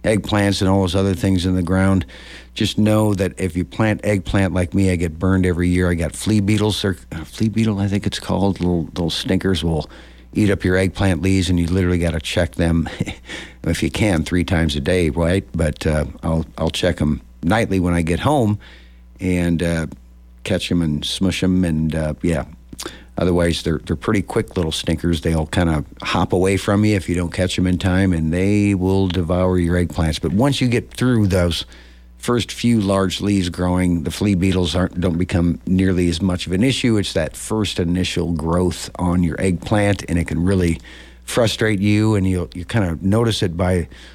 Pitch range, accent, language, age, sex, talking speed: 85-95 Hz, American, English, 60-79, male, 205 wpm